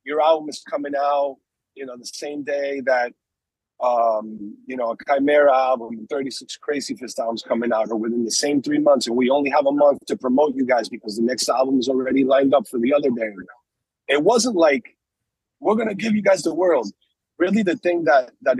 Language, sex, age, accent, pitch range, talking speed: English, male, 30-49, American, 130-175 Hz, 215 wpm